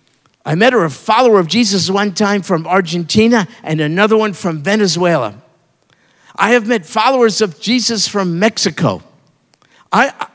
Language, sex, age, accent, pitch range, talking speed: English, male, 50-69, American, 165-260 Hz, 140 wpm